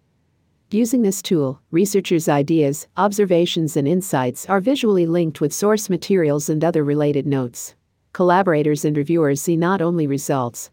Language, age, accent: English, 50-69, American